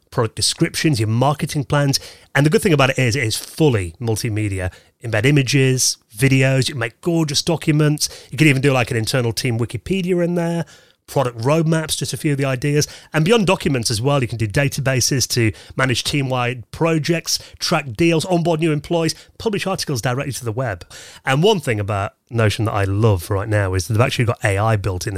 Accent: British